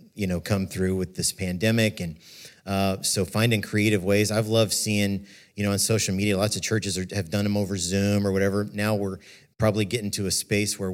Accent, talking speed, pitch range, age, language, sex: American, 215 wpm, 100-110 Hz, 50-69, English, male